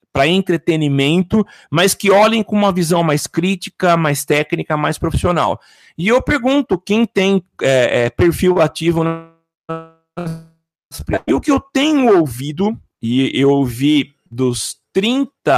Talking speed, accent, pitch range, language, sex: 135 wpm, Brazilian, 135-180 Hz, Portuguese, male